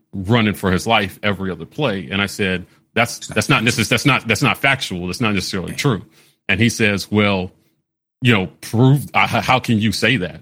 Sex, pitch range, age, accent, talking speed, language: male, 95-120 Hz, 40-59, American, 200 wpm, English